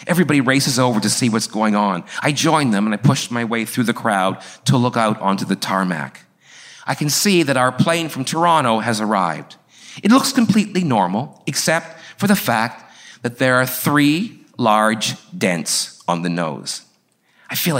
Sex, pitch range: male, 120-165 Hz